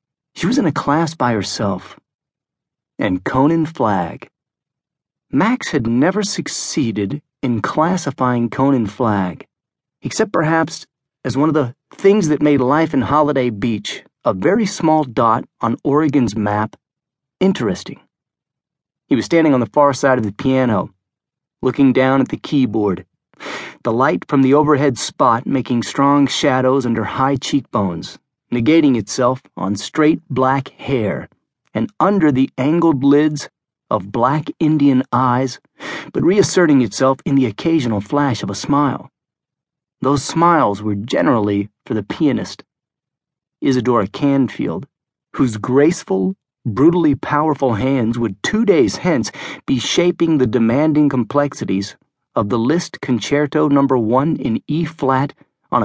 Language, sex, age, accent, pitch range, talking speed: English, male, 40-59, American, 125-155 Hz, 135 wpm